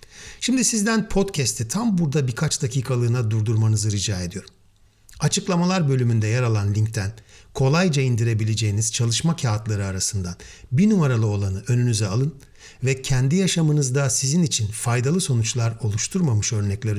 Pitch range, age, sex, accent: 105-150 Hz, 50-69, male, native